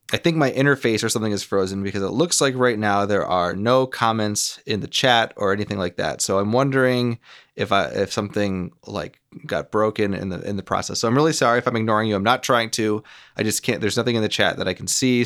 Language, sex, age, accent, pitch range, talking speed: English, male, 30-49, American, 105-130 Hz, 250 wpm